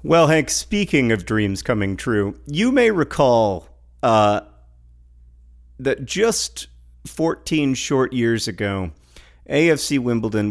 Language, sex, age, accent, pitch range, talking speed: English, male, 40-59, American, 95-125 Hz, 110 wpm